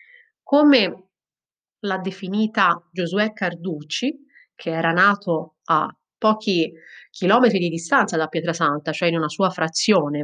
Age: 30-49